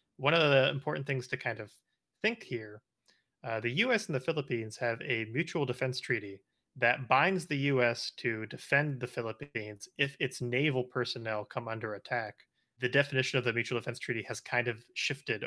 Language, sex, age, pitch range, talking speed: English, male, 30-49, 115-135 Hz, 180 wpm